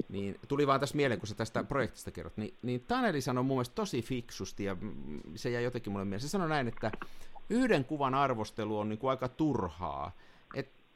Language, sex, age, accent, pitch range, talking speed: Finnish, male, 50-69, native, 105-140 Hz, 195 wpm